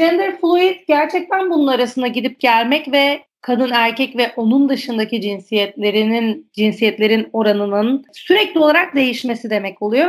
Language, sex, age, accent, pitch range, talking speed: Turkish, female, 40-59, native, 235-330 Hz, 125 wpm